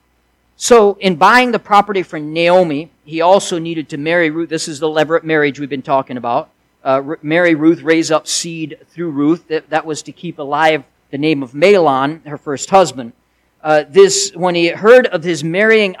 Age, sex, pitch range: 50-69, male, 150-210 Hz